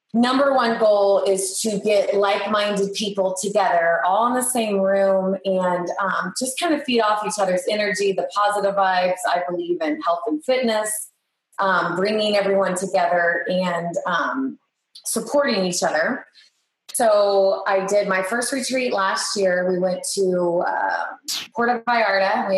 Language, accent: English, American